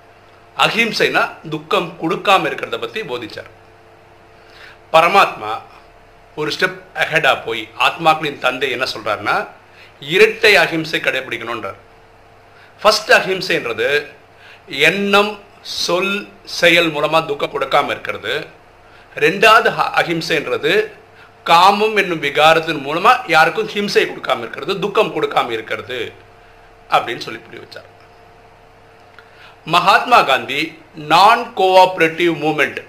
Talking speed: 85 wpm